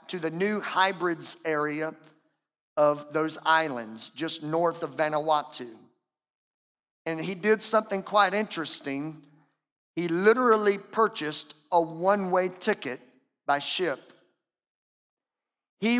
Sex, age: male, 50-69